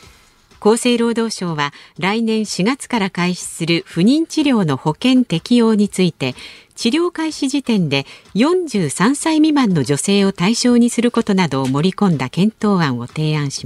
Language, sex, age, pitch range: Japanese, female, 50-69, 165-250 Hz